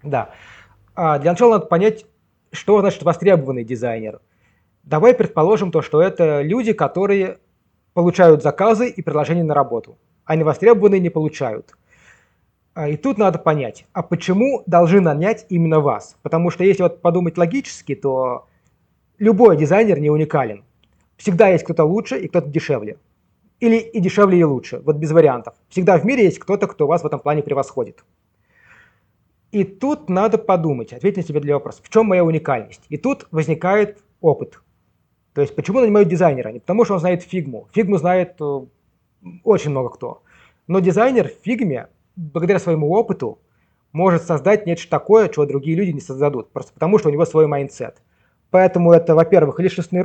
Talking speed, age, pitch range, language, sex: 160 wpm, 20-39, 145-195 Hz, Russian, male